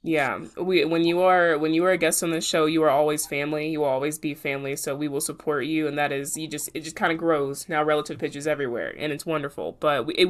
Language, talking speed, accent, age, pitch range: English, 275 wpm, American, 20-39, 145-170 Hz